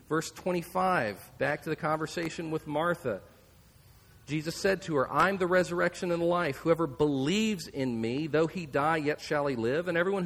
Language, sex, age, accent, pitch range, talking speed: English, male, 40-59, American, 160-220 Hz, 185 wpm